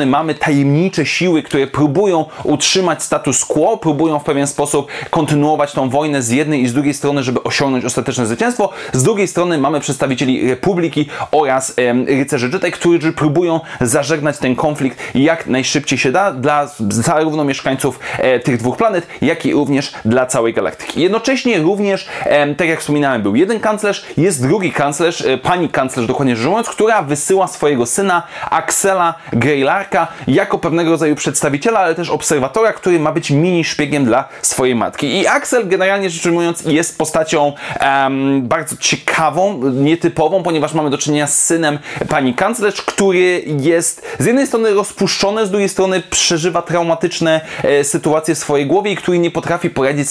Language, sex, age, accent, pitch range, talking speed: Polish, male, 30-49, native, 140-180 Hz, 160 wpm